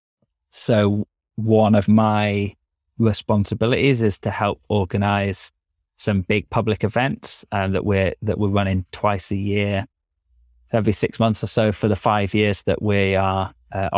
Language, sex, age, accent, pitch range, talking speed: English, male, 20-39, British, 95-105 Hz, 150 wpm